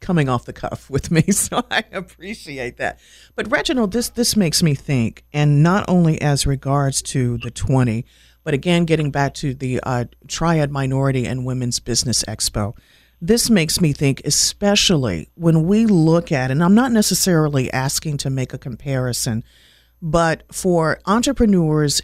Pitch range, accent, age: 130-175 Hz, American, 50-69